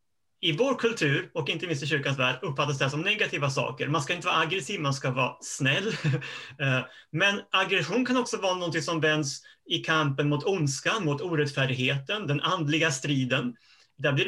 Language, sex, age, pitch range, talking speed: Swedish, male, 30-49, 140-185 Hz, 175 wpm